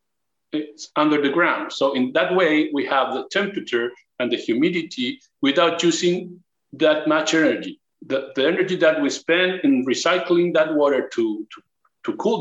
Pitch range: 145-240 Hz